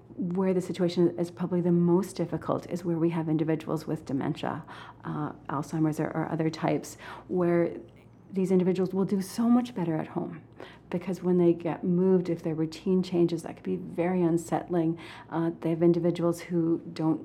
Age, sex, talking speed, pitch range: 40-59, female, 175 wpm, 160-190 Hz